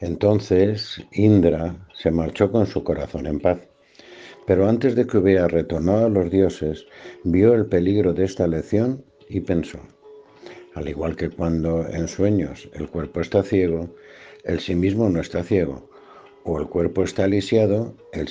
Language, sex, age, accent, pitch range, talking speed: Spanish, male, 60-79, Spanish, 85-105 Hz, 155 wpm